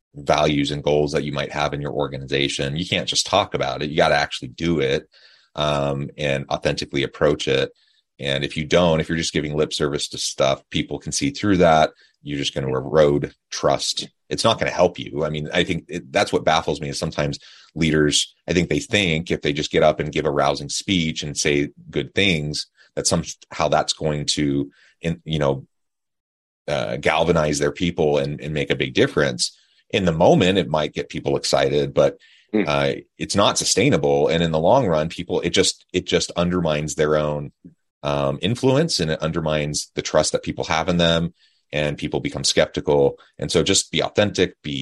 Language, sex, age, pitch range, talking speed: English, male, 30-49, 70-85 Hz, 205 wpm